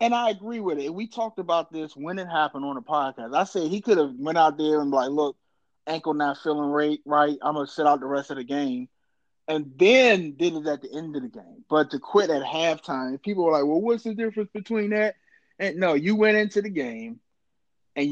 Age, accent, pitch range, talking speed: 20-39, American, 140-190 Hz, 240 wpm